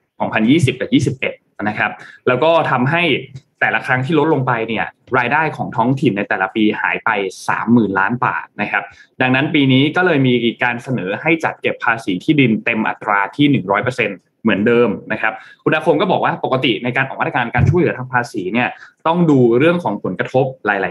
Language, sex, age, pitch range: Thai, male, 20-39, 120-150 Hz